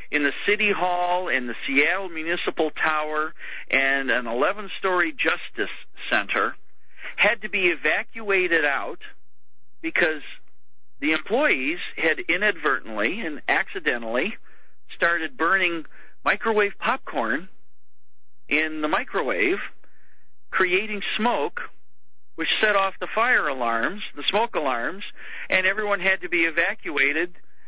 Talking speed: 110 wpm